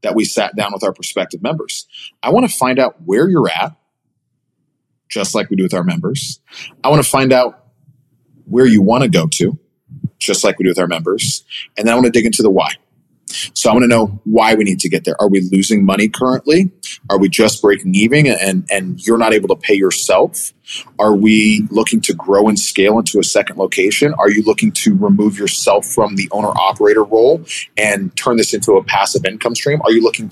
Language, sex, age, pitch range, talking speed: English, male, 30-49, 105-150 Hz, 215 wpm